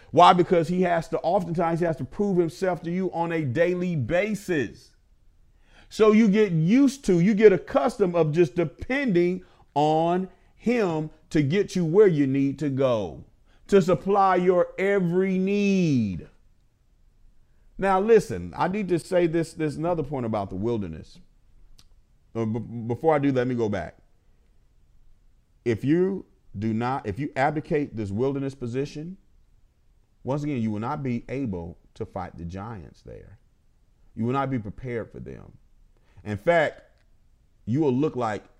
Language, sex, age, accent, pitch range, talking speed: English, male, 40-59, American, 110-175 Hz, 150 wpm